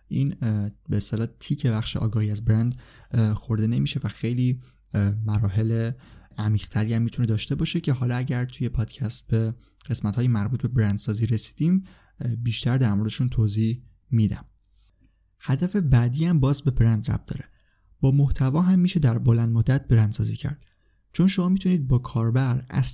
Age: 20-39